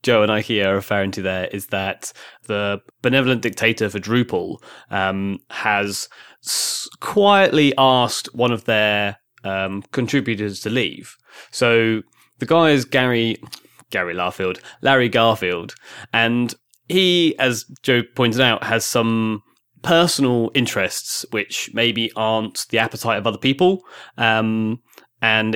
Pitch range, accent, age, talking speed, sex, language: 100-120 Hz, British, 20-39, 125 wpm, male, English